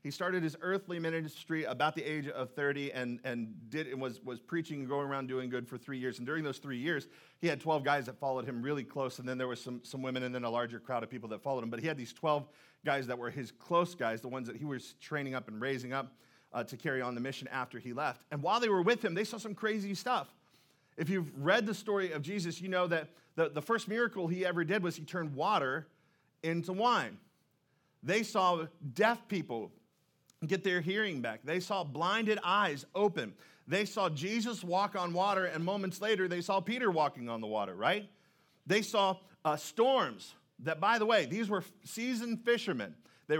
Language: English